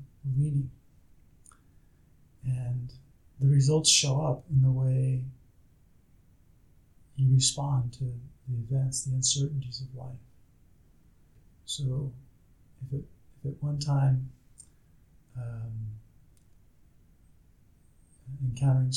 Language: English